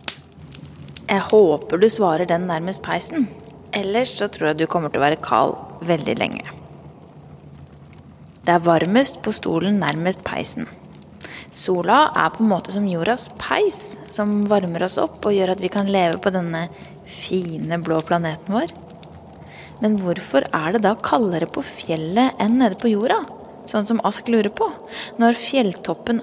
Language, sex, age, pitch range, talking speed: English, female, 20-39, 180-225 Hz, 155 wpm